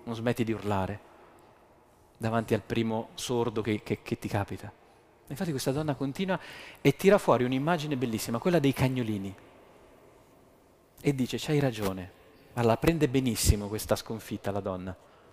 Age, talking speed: 30-49, 145 wpm